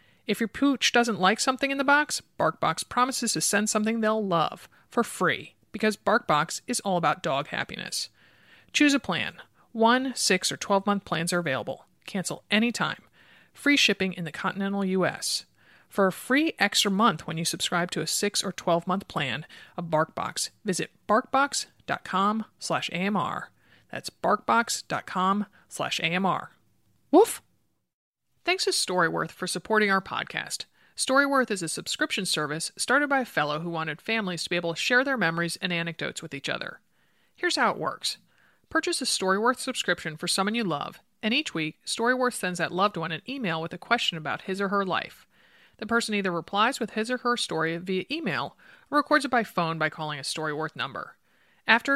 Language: English